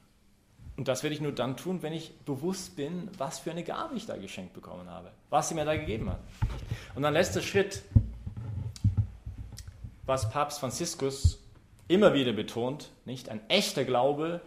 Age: 40-59